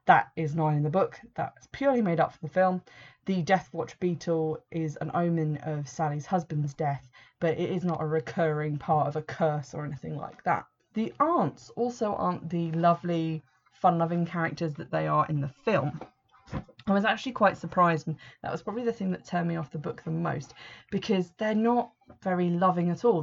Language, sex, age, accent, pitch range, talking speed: English, female, 20-39, British, 155-175 Hz, 200 wpm